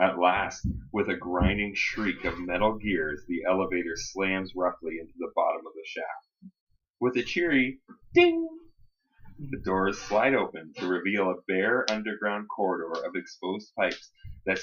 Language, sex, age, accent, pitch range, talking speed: English, male, 30-49, American, 90-110 Hz, 150 wpm